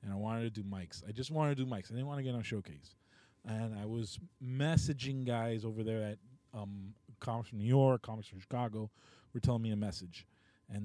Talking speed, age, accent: 230 wpm, 20-39, American